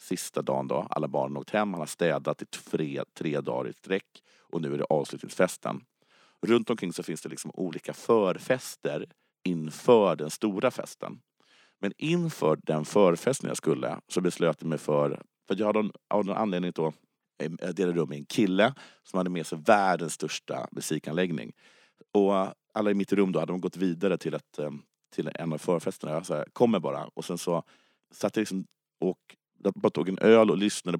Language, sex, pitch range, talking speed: Swedish, male, 80-105 Hz, 190 wpm